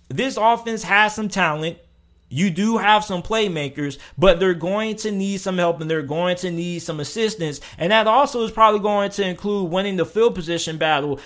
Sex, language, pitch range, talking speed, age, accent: male, English, 165-195 Hz, 195 wpm, 20-39, American